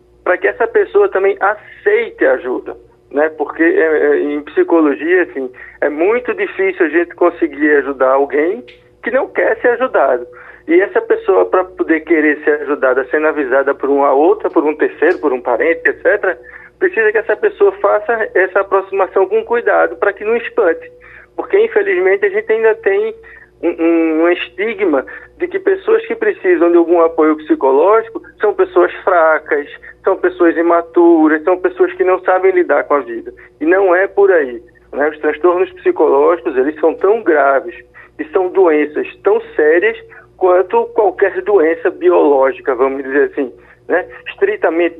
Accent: Brazilian